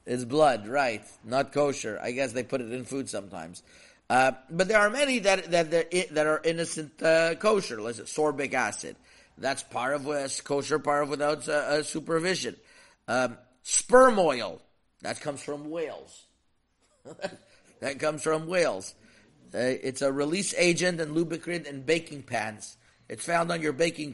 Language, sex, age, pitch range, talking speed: English, male, 50-69, 130-165 Hz, 165 wpm